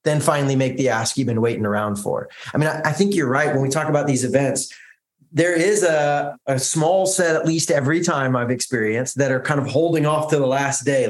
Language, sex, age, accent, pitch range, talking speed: English, male, 20-39, American, 135-170 Hz, 240 wpm